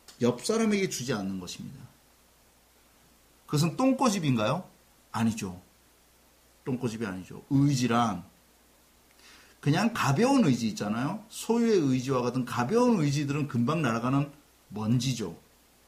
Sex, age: male, 40-59